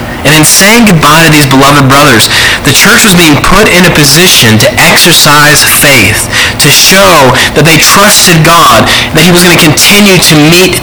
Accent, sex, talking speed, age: American, male, 185 wpm, 30-49